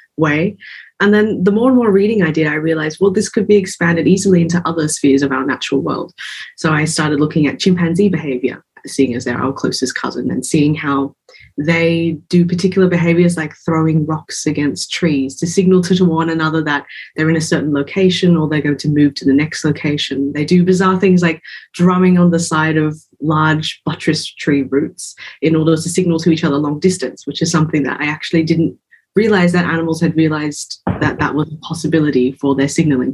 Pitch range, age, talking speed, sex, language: 145-175 Hz, 20-39, 205 wpm, female, English